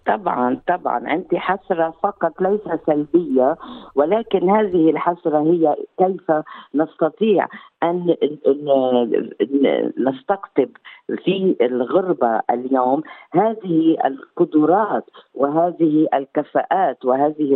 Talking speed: 80 wpm